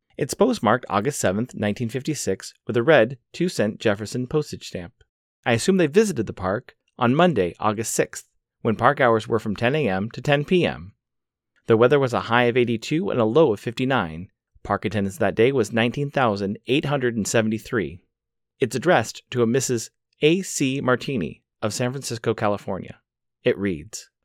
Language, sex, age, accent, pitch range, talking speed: English, male, 30-49, American, 105-150 Hz, 155 wpm